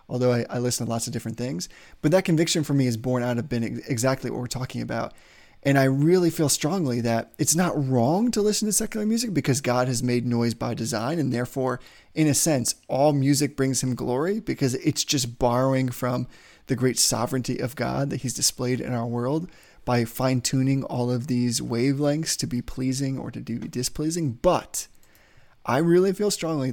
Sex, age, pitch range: male, 20-39, 125-145 Hz